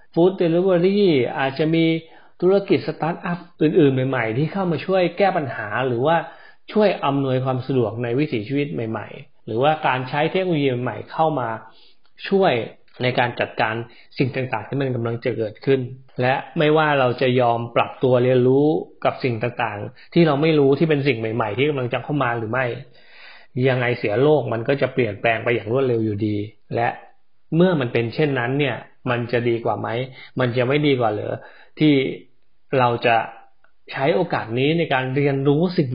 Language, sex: Thai, male